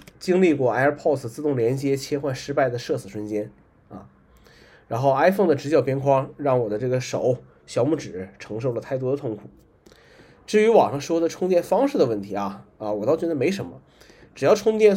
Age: 20-39